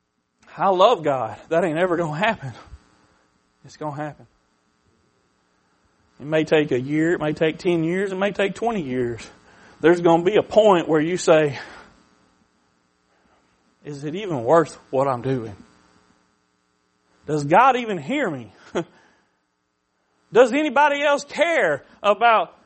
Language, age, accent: English, 40-59, American